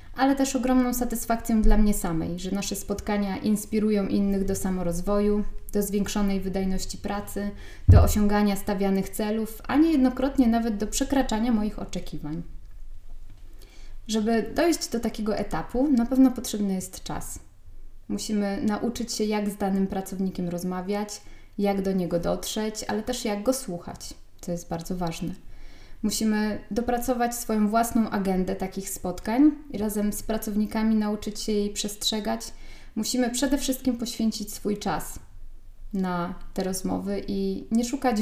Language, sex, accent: Polish, female, native